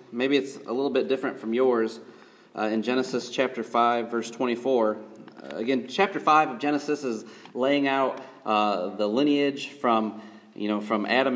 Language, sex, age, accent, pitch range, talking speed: English, male, 30-49, American, 115-140 Hz, 170 wpm